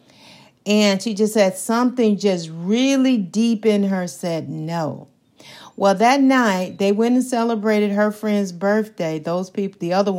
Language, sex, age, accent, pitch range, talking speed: English, female, 50-69, American, 190-230 Hz, 155 wpm